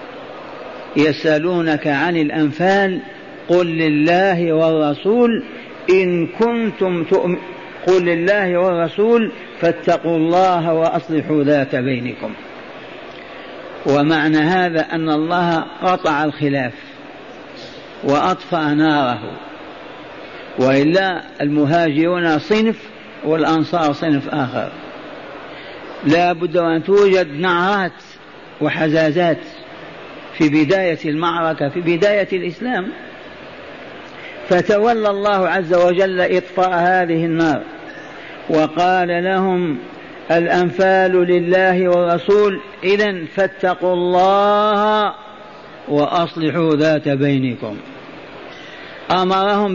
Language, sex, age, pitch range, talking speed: Arabic, male, 50-69, 160-190 Hz, 75 wpm